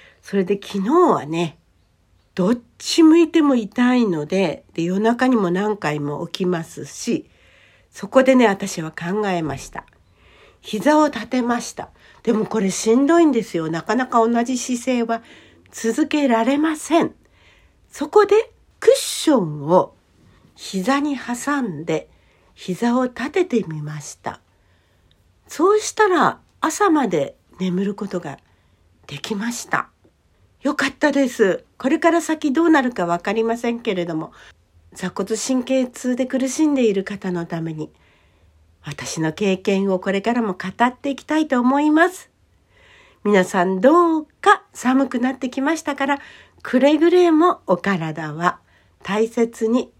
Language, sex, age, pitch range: Japanese, female, 60-79, 180-290 Hz